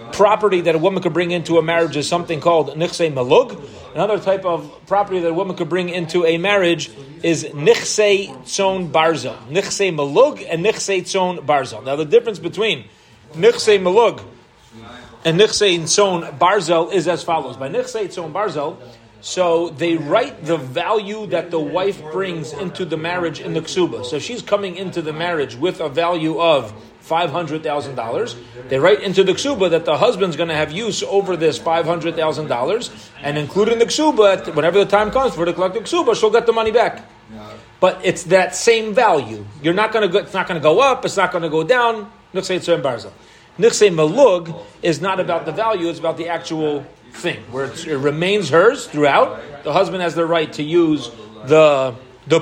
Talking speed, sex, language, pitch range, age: 185 wpm, male, English, 155-195 Hz, 30-49